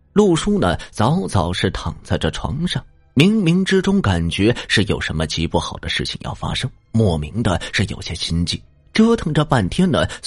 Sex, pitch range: male, 85-120 Hz